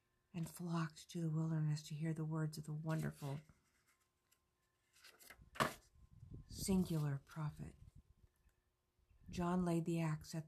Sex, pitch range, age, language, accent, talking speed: female, 155-170 Hz, 50-69, English, American, 110 wpm